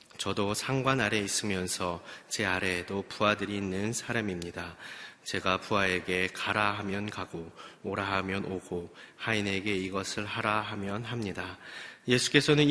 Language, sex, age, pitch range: Korean, male, 30-49, 95-110 Hz